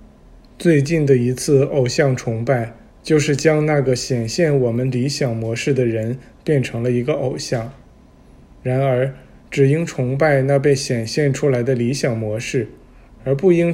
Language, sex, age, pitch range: Chinese, male, 20-39, 120-145 Hz